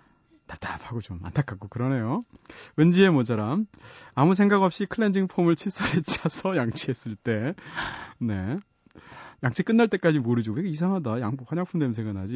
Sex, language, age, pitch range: male, Korean, 30-49, 115-175 Hz